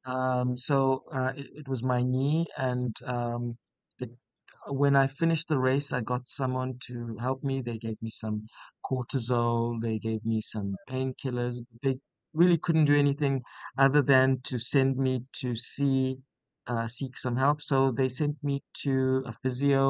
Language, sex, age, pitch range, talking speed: English, male, 50-69, 125-140 Hz, 165 wpm